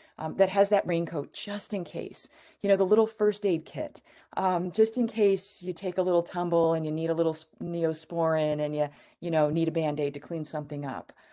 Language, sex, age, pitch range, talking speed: English, female, 30-49, 150-190 Hz, 230 wpm